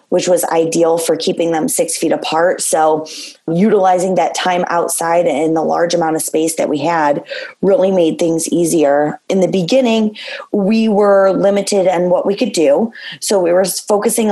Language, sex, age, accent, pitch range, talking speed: English, female, 20-39, American, 170-200 Hz, 175 wpm